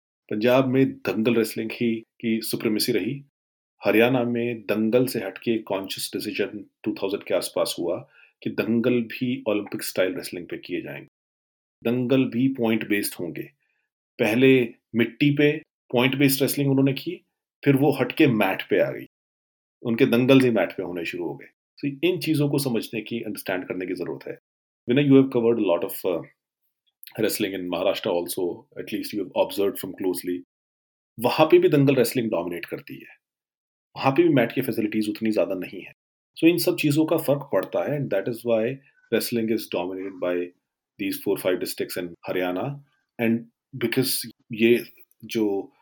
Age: 40-59